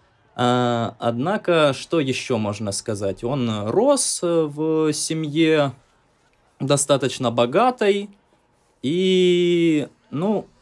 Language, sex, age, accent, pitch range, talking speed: Russian, male, 20-39, native, 105-135 Hz, 75 wpm